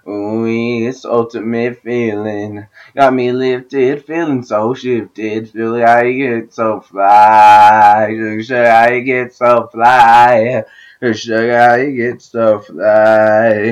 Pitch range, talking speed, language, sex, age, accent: 110-125 Hz, 165 wpm, English, male, 20-39, American